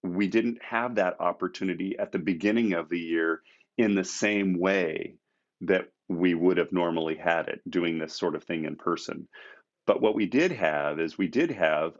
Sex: male